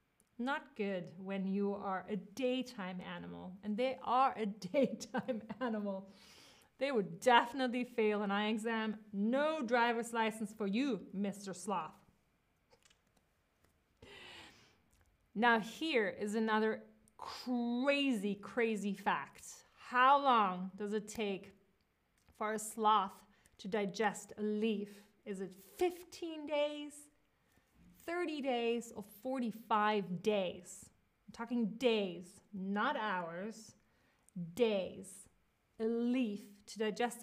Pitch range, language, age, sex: 200-250 Hz, English, 30-49, female